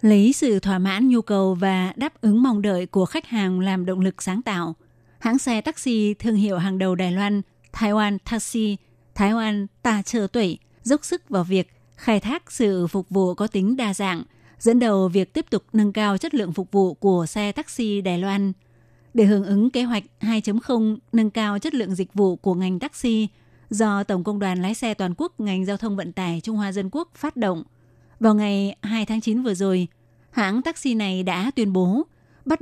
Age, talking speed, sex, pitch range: 20-39, 210 wpm, female, 190-225 Hz